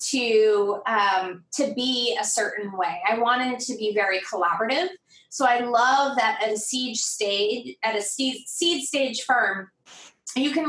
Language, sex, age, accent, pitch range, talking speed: English, female, 20-39, American, 215-265 Hz, 170 wpm